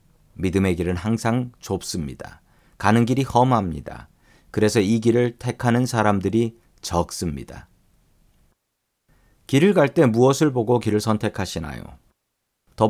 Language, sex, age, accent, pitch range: Korean, male, 40-59, native, 95-130 Hz